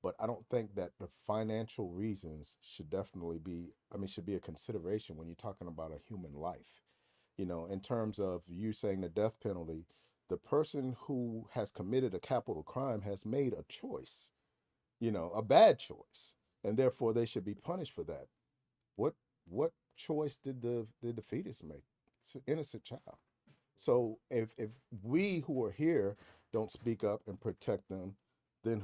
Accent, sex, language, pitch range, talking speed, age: American, male, English, 100-130 Hz, 175 wpm, 50-69